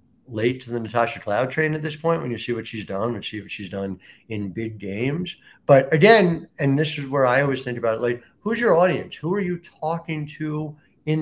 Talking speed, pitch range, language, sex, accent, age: 235 wpm, 115-150 Hz, English, male, American, 50-69